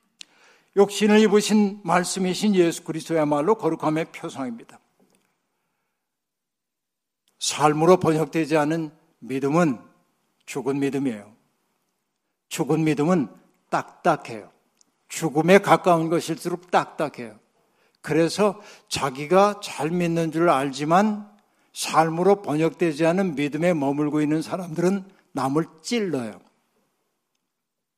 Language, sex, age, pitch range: Korean, male, 60-79, 155-200 Hz